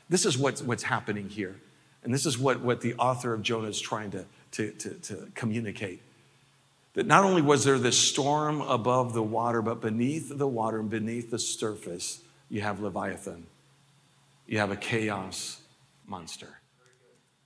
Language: English